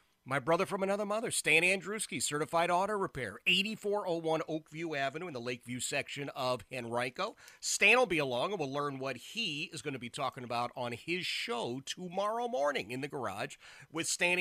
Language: English